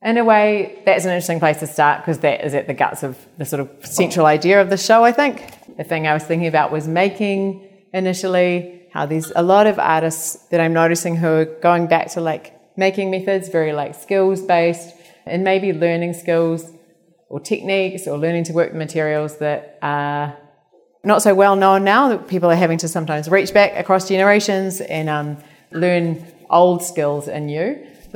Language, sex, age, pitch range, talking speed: English, female, 30-49, 160-190 Hz, 195 wpm